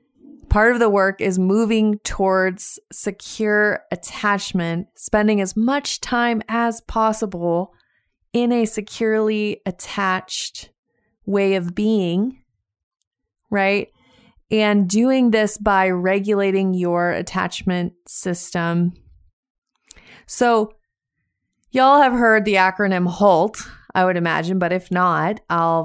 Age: 30-49